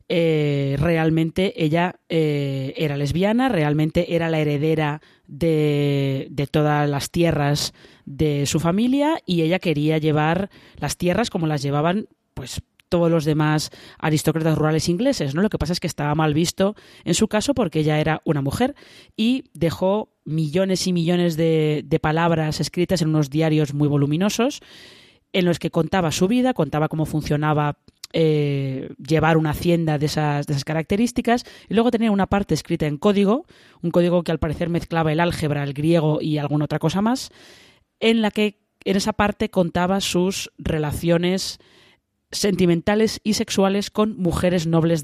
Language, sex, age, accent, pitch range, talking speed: Spanish, female, 20-39, Spanish, 155-190 Hz, 160 wpm